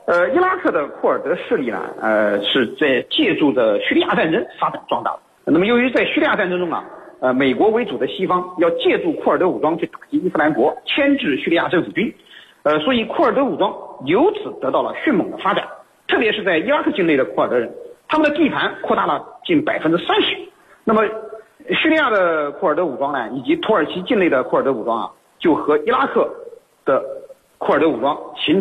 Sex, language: male, Chinese